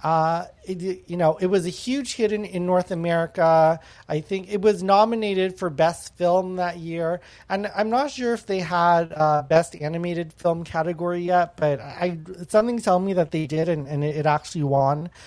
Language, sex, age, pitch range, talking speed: English, male, 30-49, 150-190 Hz, 195 wpm